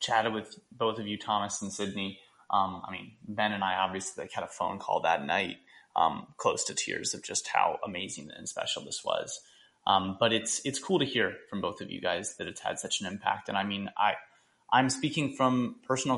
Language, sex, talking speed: English, male, 225 wpm